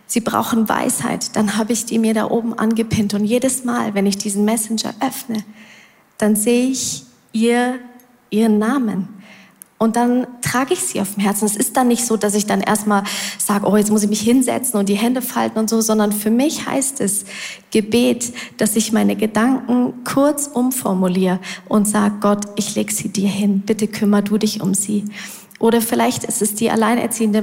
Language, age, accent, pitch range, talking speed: German, 40-59, German, 210-235 Hz, 190 wpm